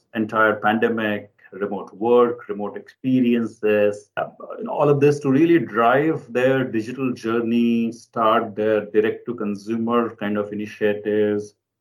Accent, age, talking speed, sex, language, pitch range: Indian, 30-49, 110 wpm, male, English, 115-145 Hz